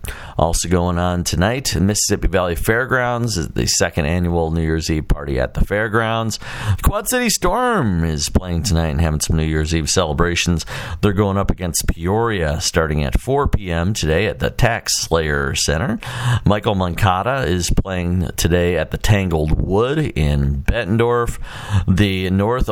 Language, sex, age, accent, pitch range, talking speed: English, male, 40-59, American, 85-110 Hz, 155 wpm